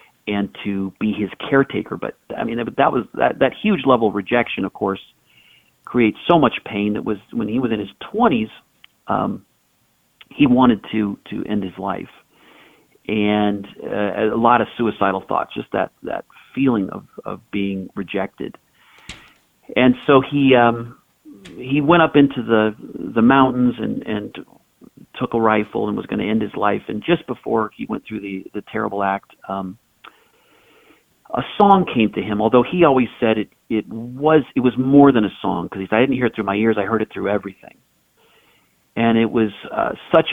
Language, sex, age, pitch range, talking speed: English, male, 50-69, 105-130 Hz, 185 wpm